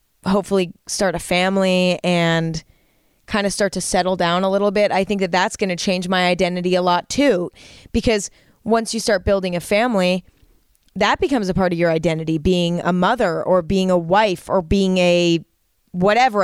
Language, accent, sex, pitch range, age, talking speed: English, American, female, 175-205 Hz, 20-39, 185 wpm